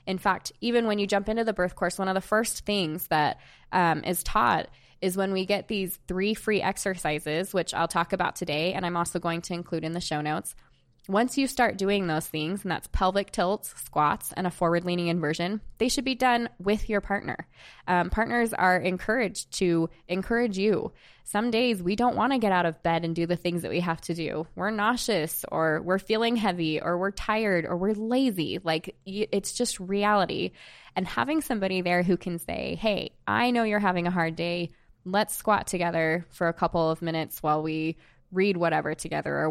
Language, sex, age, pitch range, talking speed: English, female, 20-39, 170-210 Hz, 205 wpm